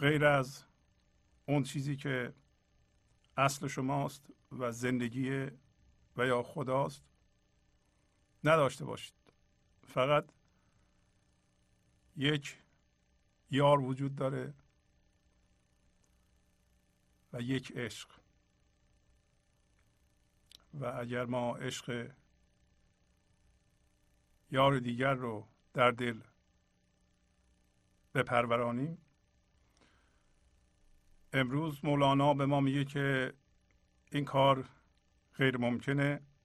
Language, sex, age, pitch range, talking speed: Persian, male, 50-69, 115-140 Hz, 70 wpm